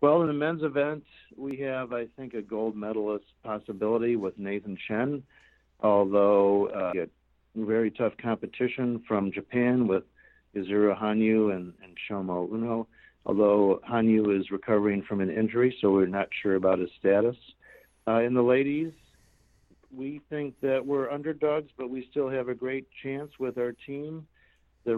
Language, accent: English, American